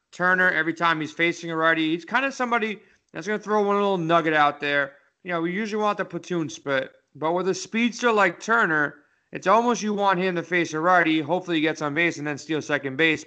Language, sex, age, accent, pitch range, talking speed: English, male, 30-49, American, 150-180 Hz, 240 wpm